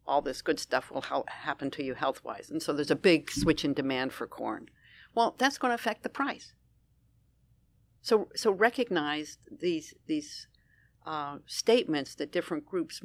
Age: 50-69